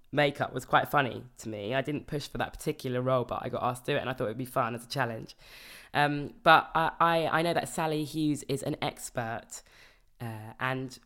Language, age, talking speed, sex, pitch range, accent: English, 20-39, 230 wpm, female, 125-150 Hz, British